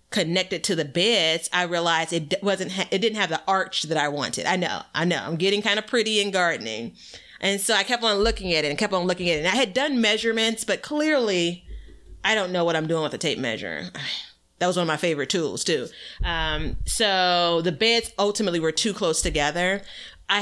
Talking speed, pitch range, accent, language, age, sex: 225 wpm, 165-200 Hz, American, English, 30-49, female